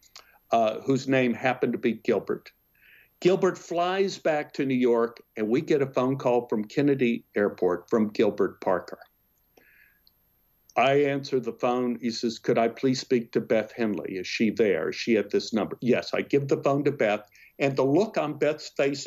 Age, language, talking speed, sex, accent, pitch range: 60-79, English, 185 wpm, male, American, 125-160 Hz